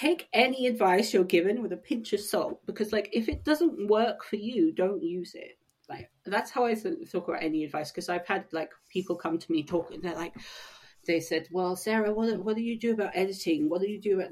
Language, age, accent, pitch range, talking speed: English, 30-49, British, 170-245 Hz, 235 wpm